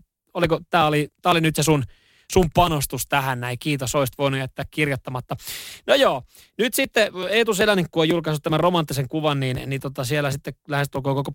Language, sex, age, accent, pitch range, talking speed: Finnish, male, 20-39, native, 140-175 Hz, 180 wpm